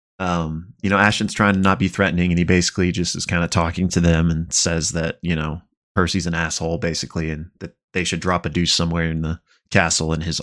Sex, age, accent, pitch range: male, 20-39, American, 85-100 Hz